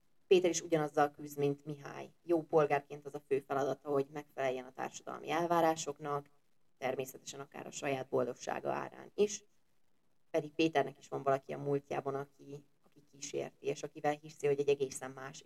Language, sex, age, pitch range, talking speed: Hungarian, female, 20-39, 140-170 Hz, 160 wpm